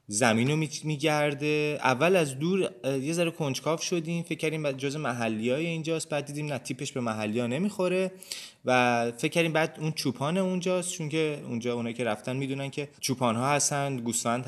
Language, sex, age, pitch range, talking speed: Persian, male, 20-39, 125-175 Hz, 165 wpm